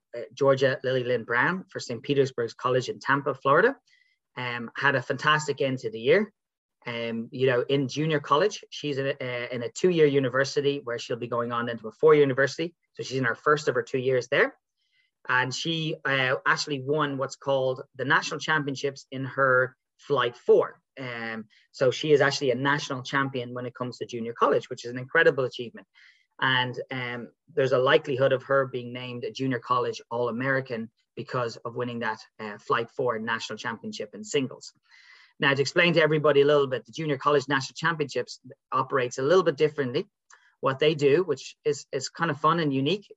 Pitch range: 125-150 Hz